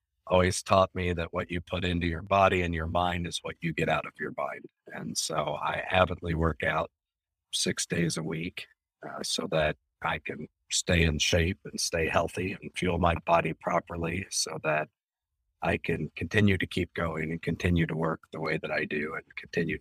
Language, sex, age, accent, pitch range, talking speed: English, male, 50-69, American, 80-90 Hz, 200 wpm